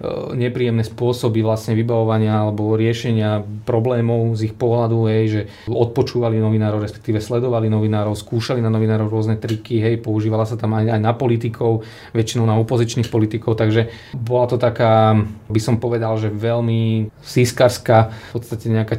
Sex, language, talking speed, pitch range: male, Slovak, 150 wpm, 110-120 Hz